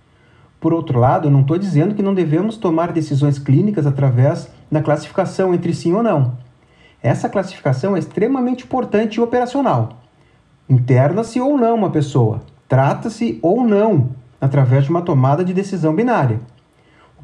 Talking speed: 150 wpm